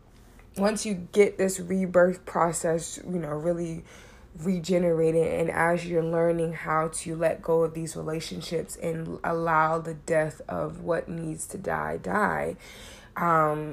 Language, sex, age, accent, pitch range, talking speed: English, female, 20-39, American, 160-180 Hz, 140 wpm